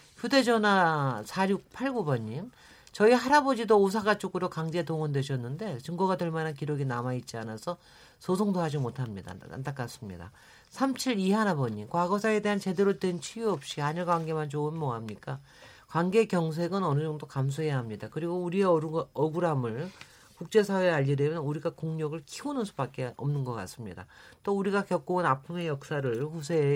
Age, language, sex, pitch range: 40-59, Korean, male, 130-190 Hz